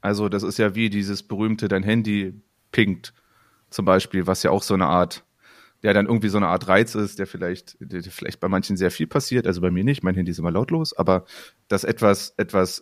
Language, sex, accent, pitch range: German, male, German, 95-110 Hz